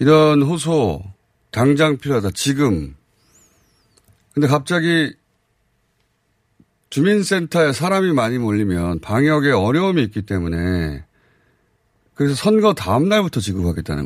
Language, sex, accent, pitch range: Korean, male, native, 95-145 Hz